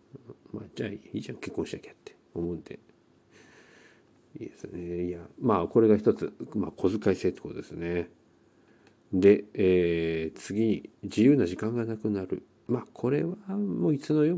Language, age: Japanese, 50-69